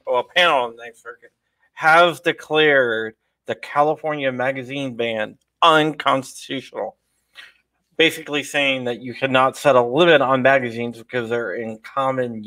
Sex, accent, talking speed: male, American, 135 wpm